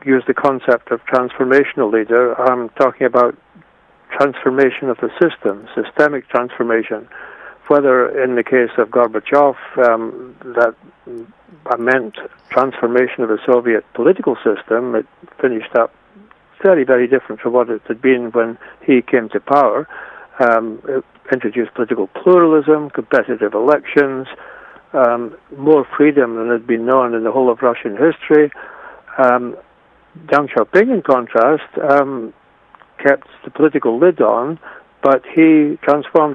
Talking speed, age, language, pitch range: 135 wpm, 60-79, English, 120-140 Hz